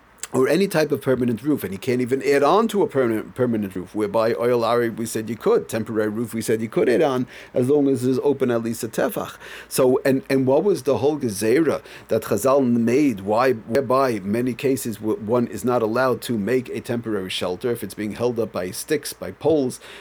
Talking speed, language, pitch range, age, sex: 220 wpm, English, 115-145 Hz, 40-59, male